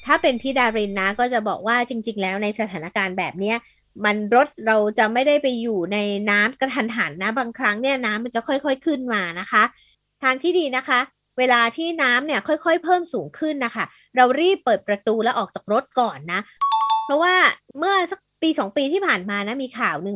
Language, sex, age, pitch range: Thai, female, 20-39, 205-275 Hz